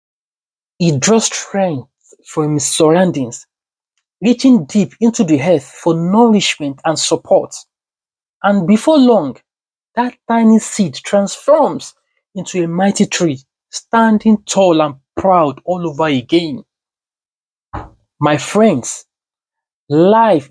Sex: male